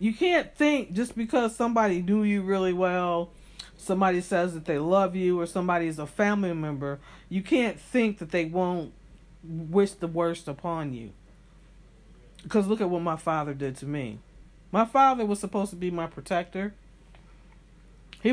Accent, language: American, English